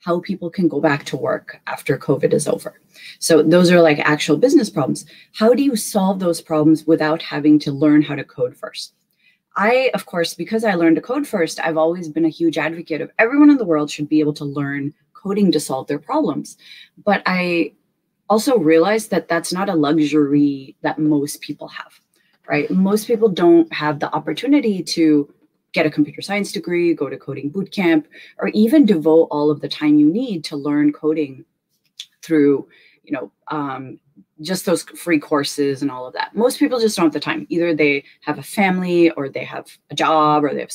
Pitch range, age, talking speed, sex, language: 150-195 Hz, 30-49, 200 wpm, female, English